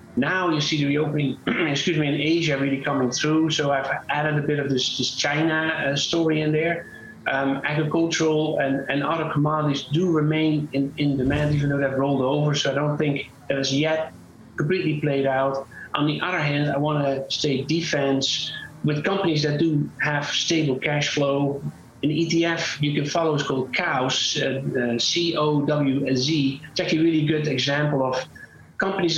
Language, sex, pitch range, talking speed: English, male, 135-155 Hz, 180 wpm